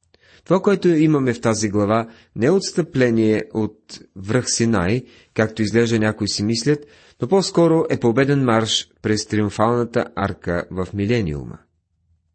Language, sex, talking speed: Bulgarian, male, 130 wpm